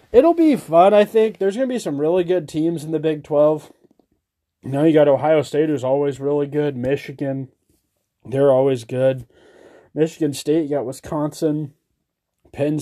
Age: 20-39